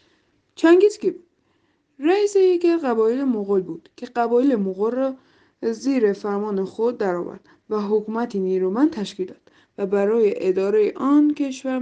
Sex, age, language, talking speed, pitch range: female, 20-39, Persian, 135 wpm, 195-285 Hz